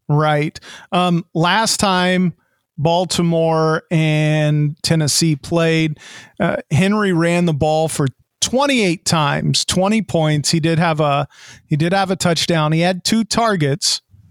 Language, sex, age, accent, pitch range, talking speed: English, male, 40-59, American, 150-185 Hz, 130 wpm